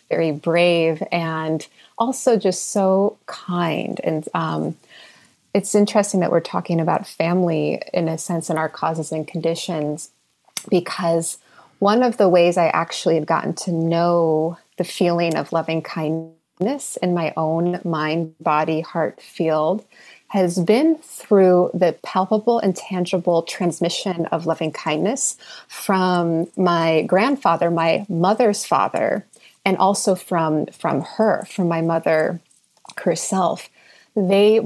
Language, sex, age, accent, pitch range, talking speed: English, female, 30-49, American, 165-190 Hz, 130 wpm